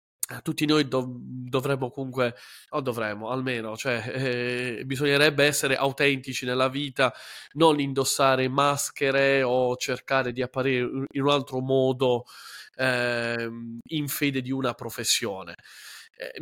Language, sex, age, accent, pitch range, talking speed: Italian, male, 20-39, native, 125-150 Hz, 120 wpm